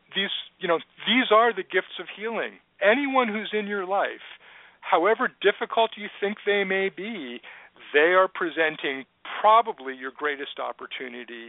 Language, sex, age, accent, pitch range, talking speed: English, male, 50-69, American, 150-205 Hz, 145 wpm